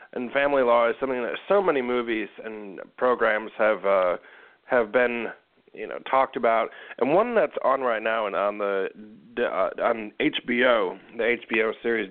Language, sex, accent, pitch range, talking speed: English, male, American, 115-140 Hz, 170 wpm